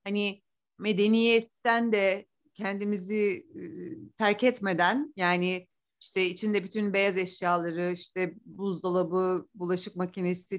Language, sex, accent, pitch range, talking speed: Turkish, female, native, 175-220 Hz, 90 wpm